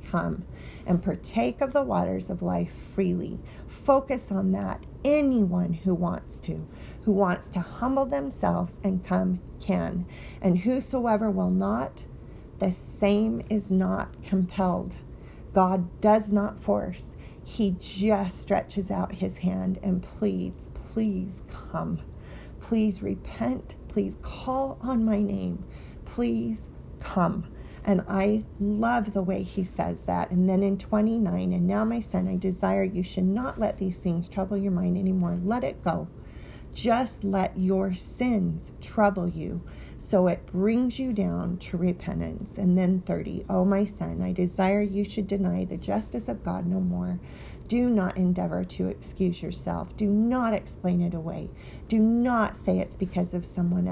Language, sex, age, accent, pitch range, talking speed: English, female, 40-59, American, 180-210 Hz, 150 wpm